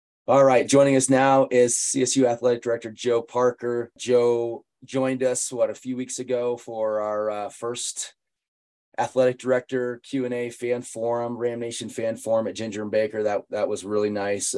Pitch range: 105-125 Hz